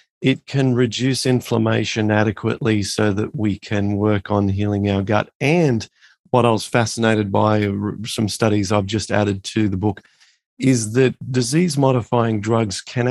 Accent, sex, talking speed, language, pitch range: Australian, male, 155 wpm, English, 105-125 Hz